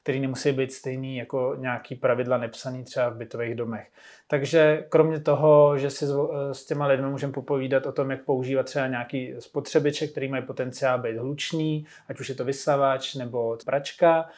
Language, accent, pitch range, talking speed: Czech, native, 130-150 Hz, 170 wpm